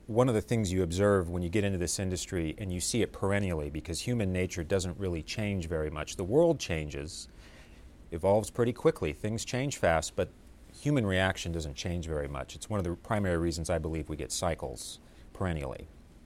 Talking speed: 200 wpm